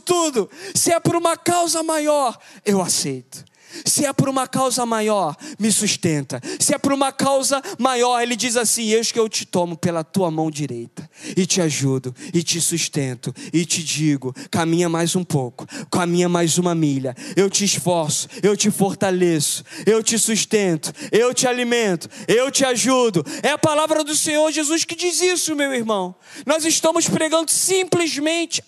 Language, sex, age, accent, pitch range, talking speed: Portuguese, male, 20-39, Brazilian, 155-220 Hz, 170 wpm